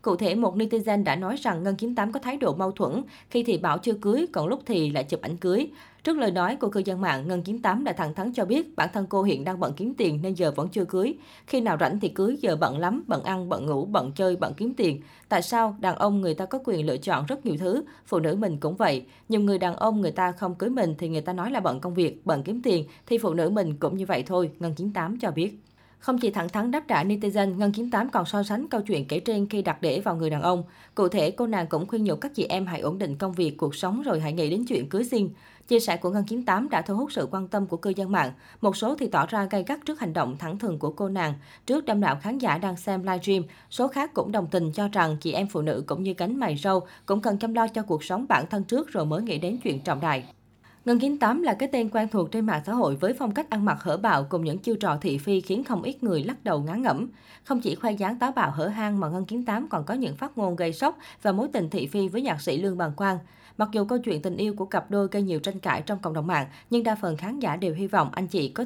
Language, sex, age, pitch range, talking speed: Vietnamese, female, 20-39, 170-230 Hz, 295 wpm